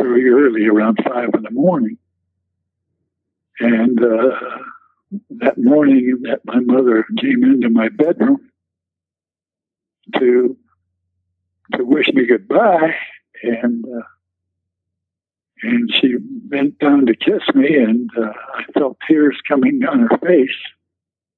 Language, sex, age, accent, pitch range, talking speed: English, male, 60-79, American, 110-160 Hz, 115 wpm